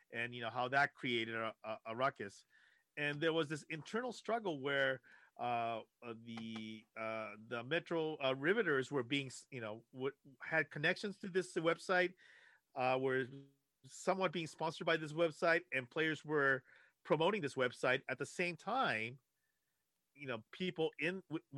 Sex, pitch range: male, 130-165 Hz